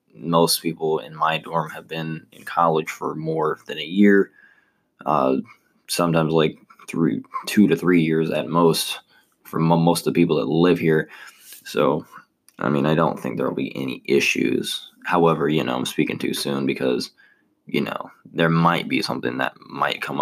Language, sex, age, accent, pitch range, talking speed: English, male, 20-39, American, 80-85 Hz, 180 wpm